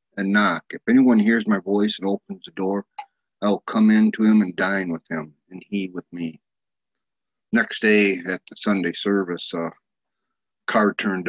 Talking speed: 180 wpm